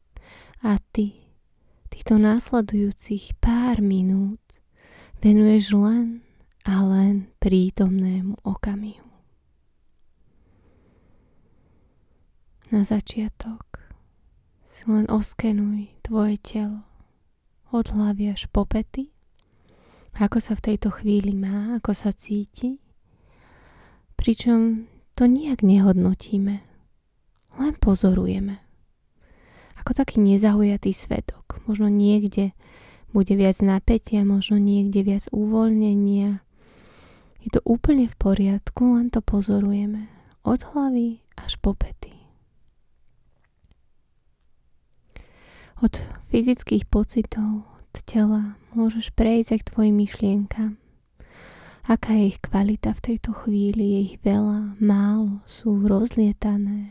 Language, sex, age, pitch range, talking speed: Slovak, female, 20-39, 195-220 Hz, 95 wpm